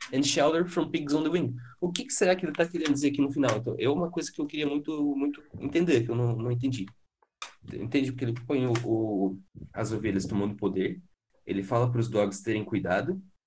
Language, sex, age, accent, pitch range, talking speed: Portuguese, male, 20-39, Brazilian, 95-135 Hz, 225 wpm